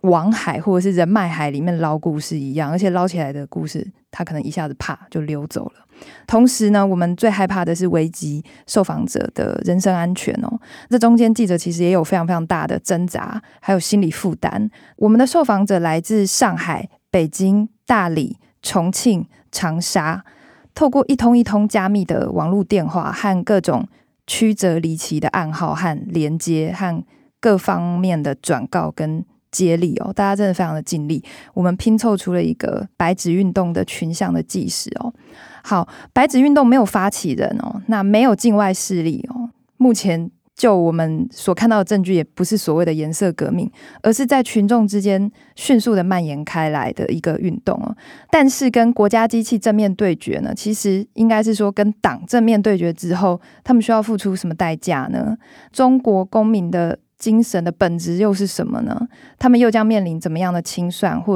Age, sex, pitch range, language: 20-39, female, 175-225 Hz, Chinese